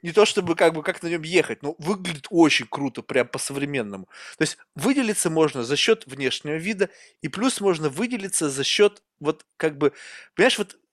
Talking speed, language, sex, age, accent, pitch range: 190 wpm, Russian, male, 20-39, native, 150-200 Hz